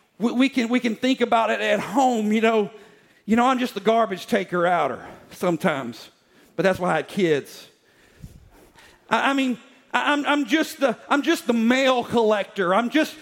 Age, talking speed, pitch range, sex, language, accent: 40-59, 185 wpm, 215-285 Hz, male, English, American